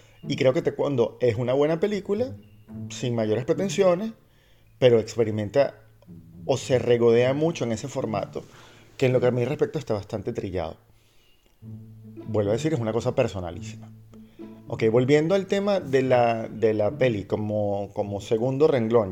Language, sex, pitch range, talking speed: Spanish, male, 110-145 Hz, 155 wpm